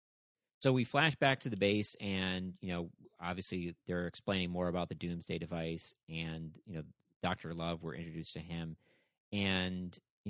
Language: English